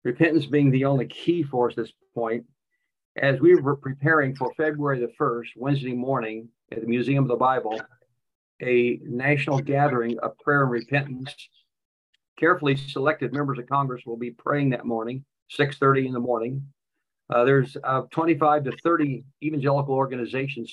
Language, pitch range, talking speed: English, 120-145 Hz, 155 wpm